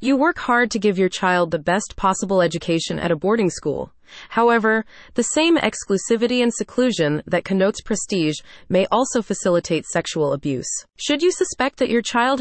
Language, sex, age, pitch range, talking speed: English, female, 30-49, 170-235 Hz, 170 wpm